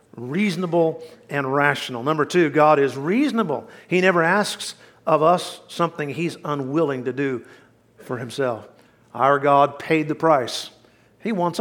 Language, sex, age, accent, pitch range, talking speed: English, male, 50-69, American, 140-185 Hz, 140 wpm